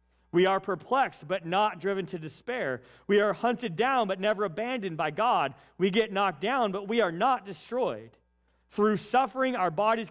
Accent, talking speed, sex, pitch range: American, 180 wpm, male, 150-215 Hz